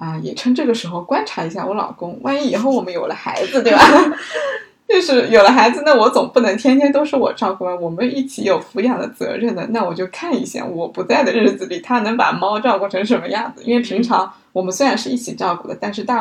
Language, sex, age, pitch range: Chinese, female, 20-39, 190-250 Hz